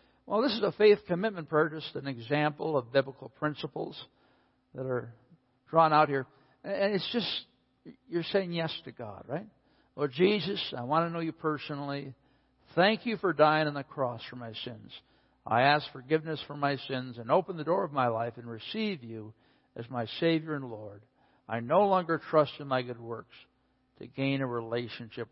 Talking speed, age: 180 wpm, 60-79